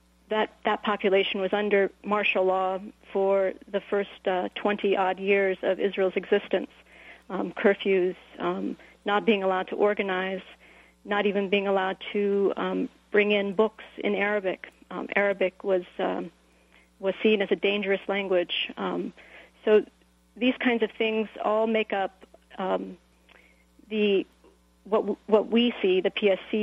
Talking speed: 145 wpm